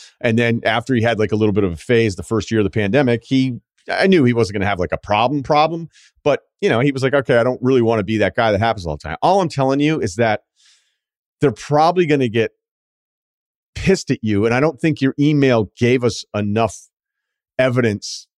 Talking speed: 235 wpm